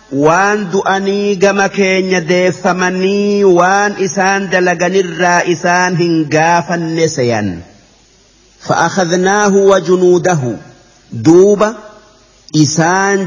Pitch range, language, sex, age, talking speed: 155-190 Hz, Arabic, male, 50-69, 70 wpm